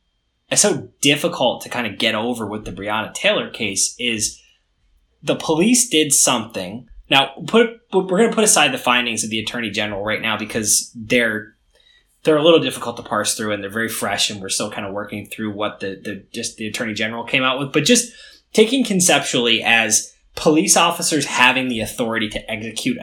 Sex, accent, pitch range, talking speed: male, American, 105-155 Hz, 195 wpm